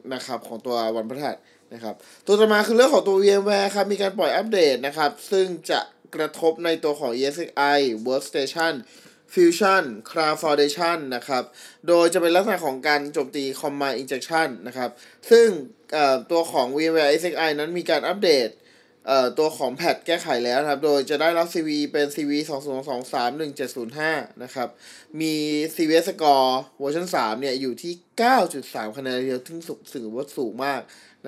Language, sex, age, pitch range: Thai, male, 20-39, 135-180 Hz